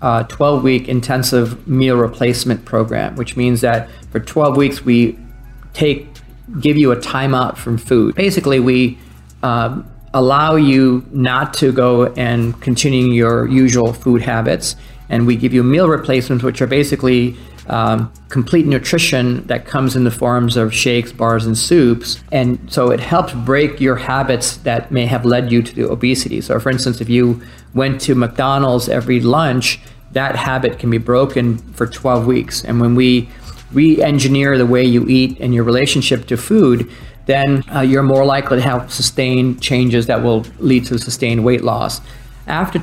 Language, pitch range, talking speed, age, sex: English, 120-135 Hz, 170 wpm, 40-59, male